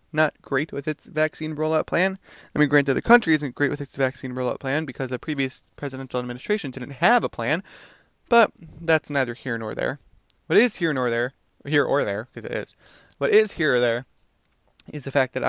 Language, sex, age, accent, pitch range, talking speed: English, male, 20-39, American, 125-150 Hz, 215 wpm